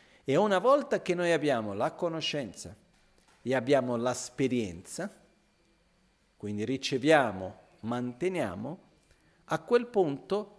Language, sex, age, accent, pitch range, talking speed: Italian, male, 50-69, native, 110-160 Hz, 95 wpm